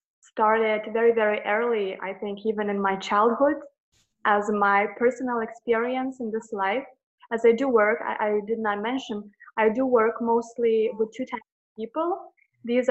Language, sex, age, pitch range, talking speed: English, female, 20-39, 210-245 Hz, 165 wpm